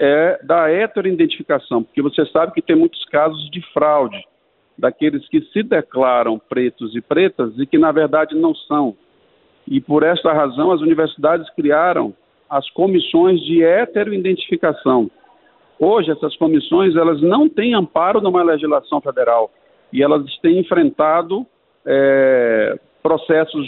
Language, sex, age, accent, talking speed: Portuguese, male, 50-69, Brazilian, 125 wpm